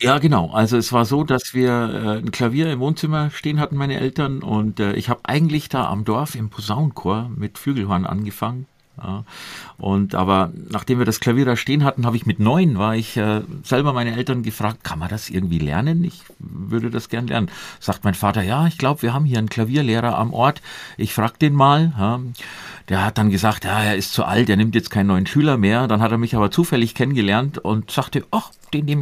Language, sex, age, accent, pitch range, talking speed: German, male, 50-69, German, 105-130 Hz, 210 wpm